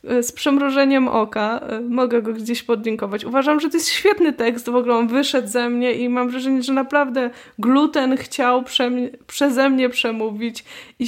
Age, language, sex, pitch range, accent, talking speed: 20-39, Polish, female, 225-265 Hz, native, 170 wpm